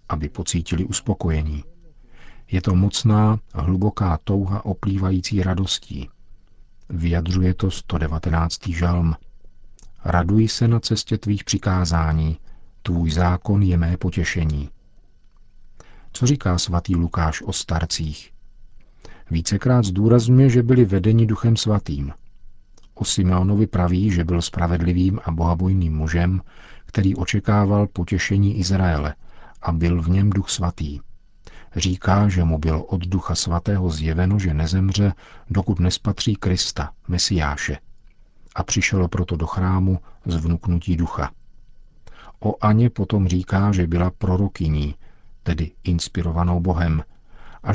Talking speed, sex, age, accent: 110 wpm, male, 50-69, native